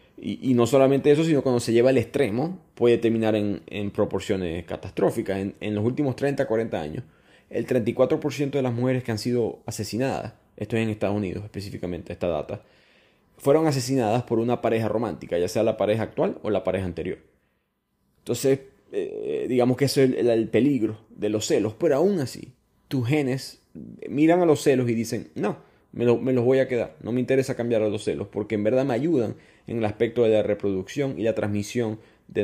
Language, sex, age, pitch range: Spanish, male, 20-39, 105-135 Hz